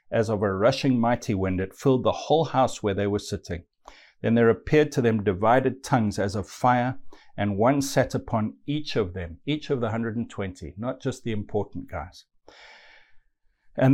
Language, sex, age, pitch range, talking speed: English, male, 60-79, 105-135 Hz, 180 wpm